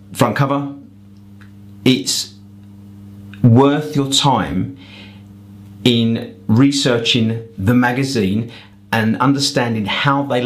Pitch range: 100-125 Hz